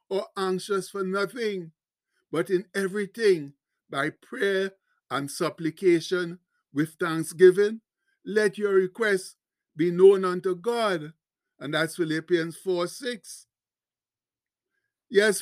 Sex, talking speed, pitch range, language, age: male, 95 wpm, 180-205 Hz, English, 60-79